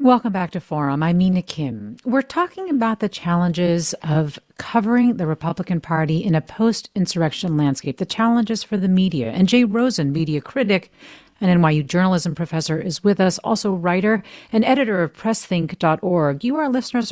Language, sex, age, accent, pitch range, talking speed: English, female, 40-59, American, 155-205 Hz, 165 wpm